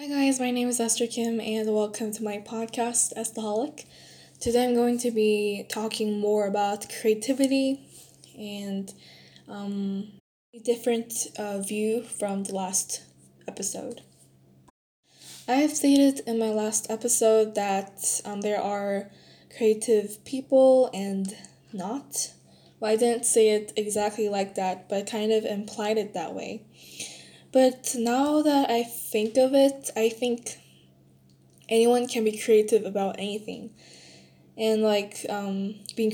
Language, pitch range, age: Korean, 200-230 Hz, 10-29